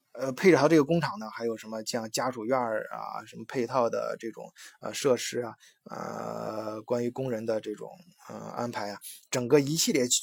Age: 20-39